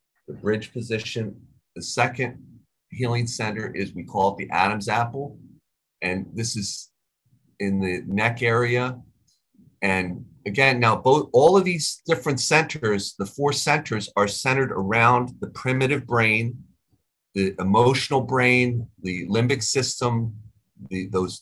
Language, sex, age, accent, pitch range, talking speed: English, male, 40-59, American, 95-125 Hz, 125 wpm